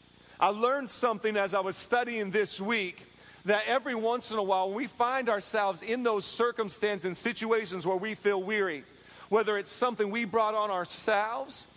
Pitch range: 160-210 Hz